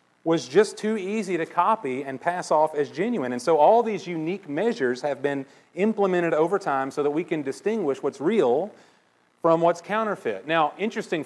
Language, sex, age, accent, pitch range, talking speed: English, male, 40-59, American, 140-200 Hz, 180 wpm